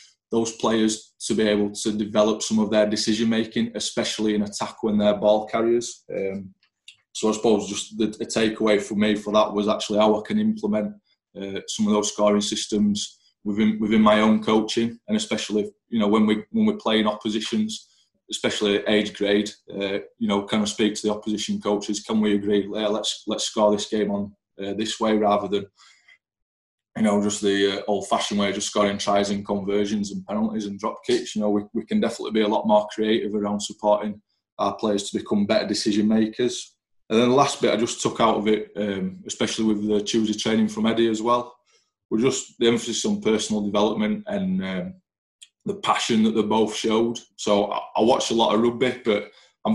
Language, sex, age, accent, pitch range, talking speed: English, male, 20-39, British, 105-115 Hz, 205 wpm